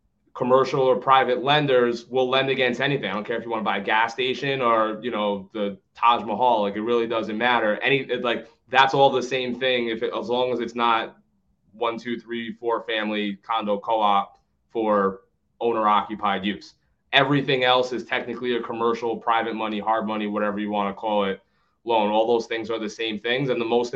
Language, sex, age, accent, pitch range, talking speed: English, male, 20-39, American, 105-125 Hz, 205 wpm